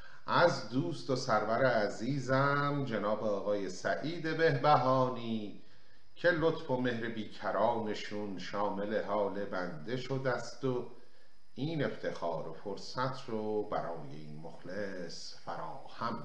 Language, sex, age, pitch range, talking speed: Persian, male, 50-69, 115-140 Hz, 105 wpm